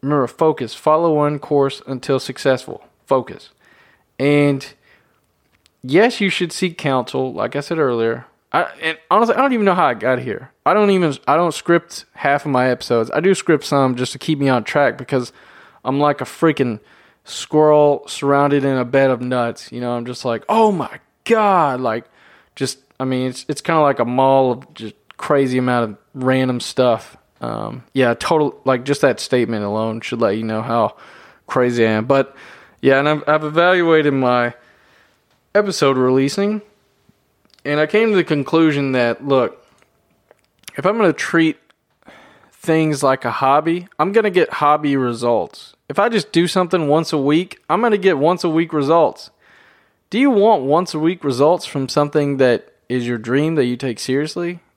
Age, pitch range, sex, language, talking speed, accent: 20-39, 130-165 Hz, male, English, 185 wpm, American